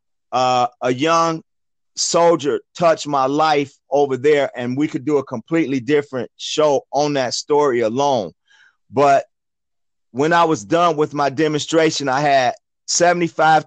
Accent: American